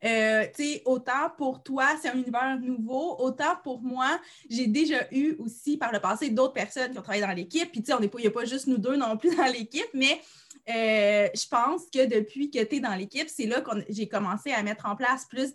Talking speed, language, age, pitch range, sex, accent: 240 wpm, French, 20-39, 210-275 Hz, female, Canadian